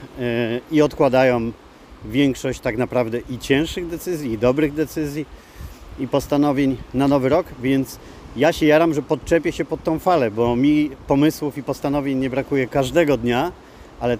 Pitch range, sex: 120-140 Hz, male